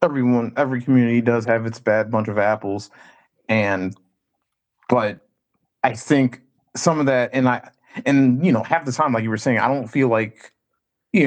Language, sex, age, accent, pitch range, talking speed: English, male, 30-49, American, 110-130 Hz, 180 wpm